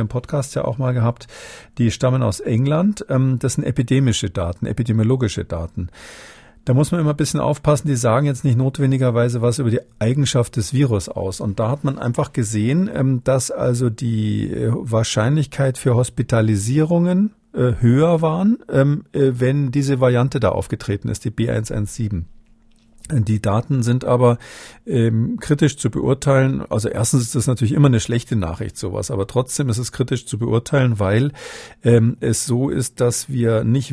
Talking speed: 155 wpm